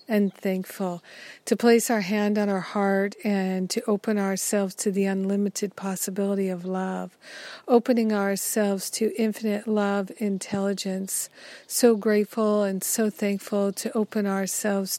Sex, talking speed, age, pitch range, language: female, 130 wpm, 50-69, 195-220 Hz, English